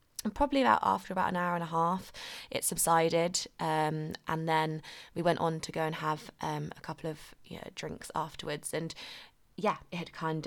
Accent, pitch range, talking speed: British, 155-185 Hz, 200 wpm